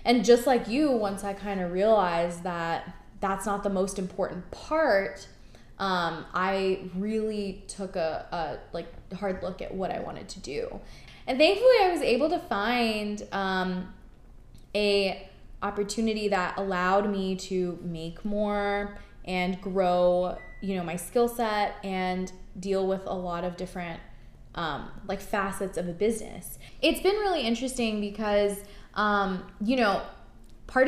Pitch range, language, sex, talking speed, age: 185-225 Hz, English, female, 150 wpm, 20-39